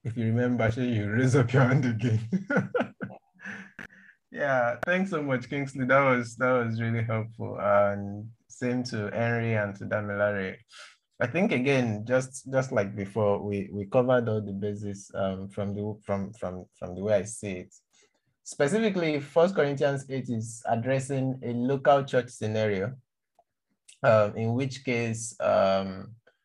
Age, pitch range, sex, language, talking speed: 20-39, 100-125 Hz, male, English, 150 wpm